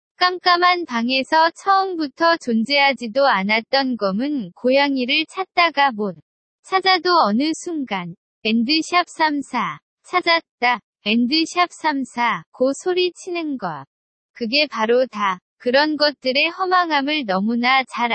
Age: 20-39